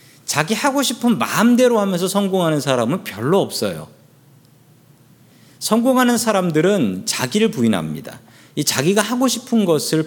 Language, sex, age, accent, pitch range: Korean, male, 40-59, native, 135-205 Hz